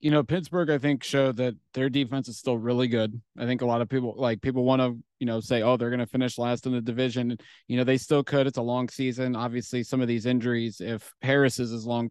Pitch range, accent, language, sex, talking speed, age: 115-130 Hz, American, English, male, 265 wpm, 30-49